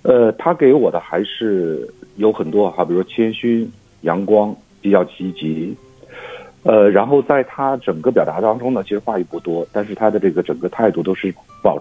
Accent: native